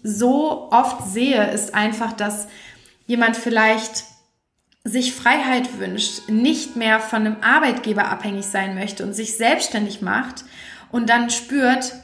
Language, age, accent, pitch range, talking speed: German, 30-49, German, 210-240 Hz, 130 wpm